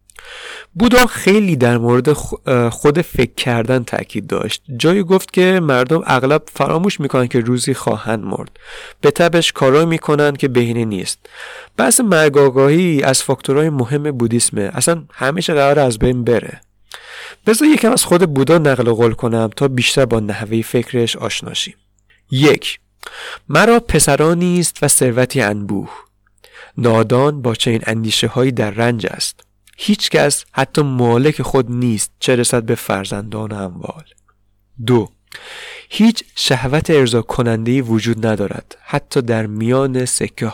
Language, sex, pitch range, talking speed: Persian, male, 115-150 Hz, 130 wpm